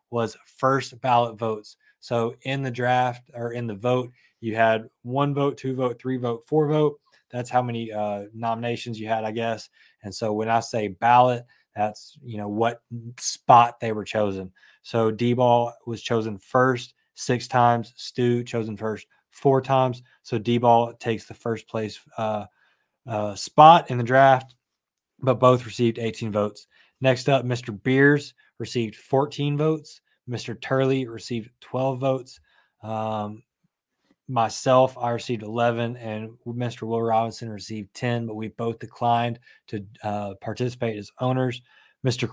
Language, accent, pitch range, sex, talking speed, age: English, American, 110-125 Hz, male, 150 wpm, 20-39